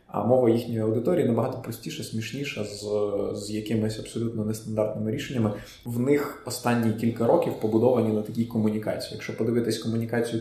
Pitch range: 110-120 Hz